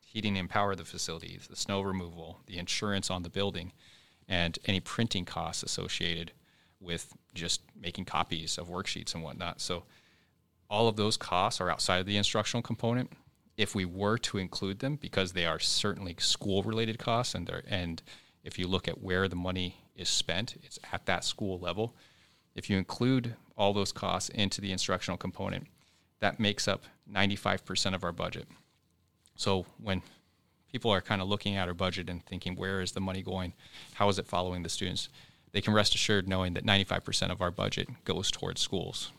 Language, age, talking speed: English, 30-49, 180 wpm